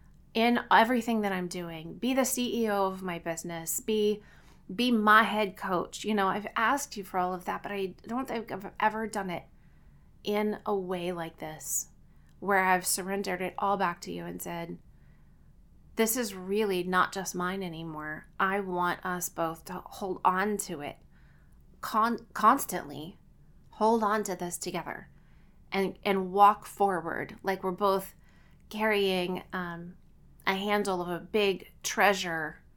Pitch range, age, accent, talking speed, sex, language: 180-205 Hz, 30-49, American, 155 wpm, female, English